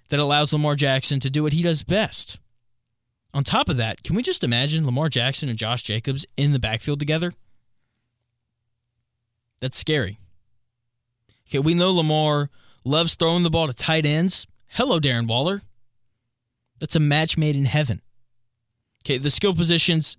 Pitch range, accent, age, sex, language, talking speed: 120-175 Hz, American, 20-39, male, English, 160 wpm